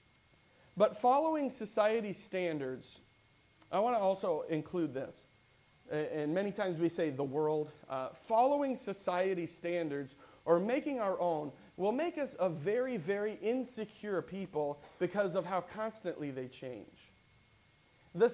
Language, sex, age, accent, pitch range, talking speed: English, male, 40-59, American, 165-230 Hz, 130 wpm